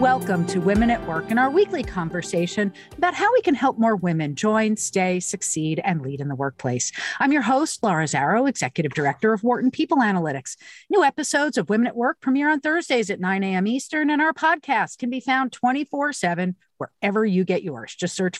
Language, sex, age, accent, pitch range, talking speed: English, female, 50-69, American, 185-285 Hz, 200 wpm